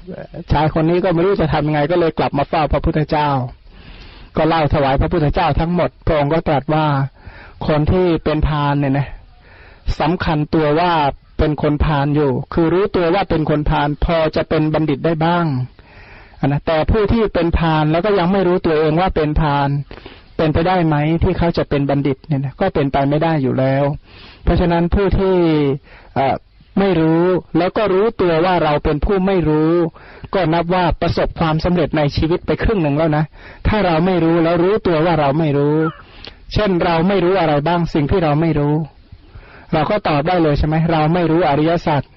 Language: Thai